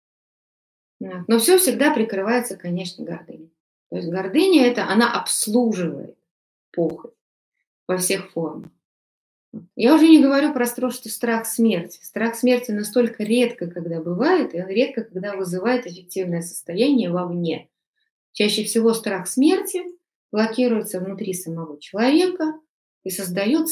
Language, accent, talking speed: Russian, native, 125 wpm